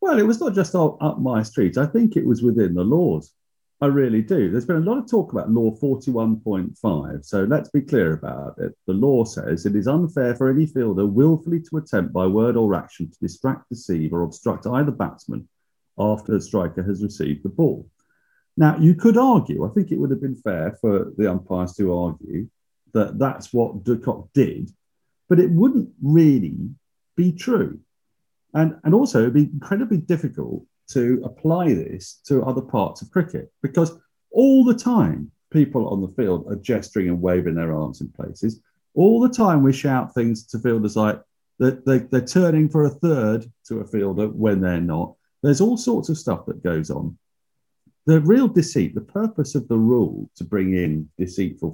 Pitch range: 100-160 Hz